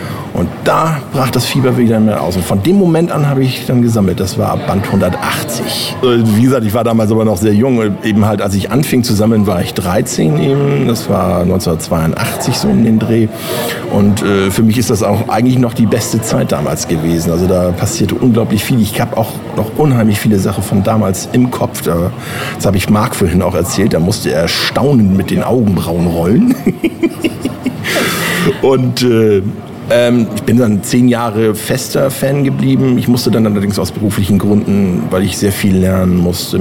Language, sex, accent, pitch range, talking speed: German, male, German, 100-125 Hz, 190 wpm